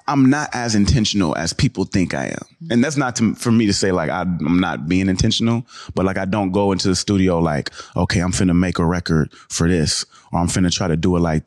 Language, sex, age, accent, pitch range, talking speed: English, male, 30-49, American, 85-100 Hz, 245 wpm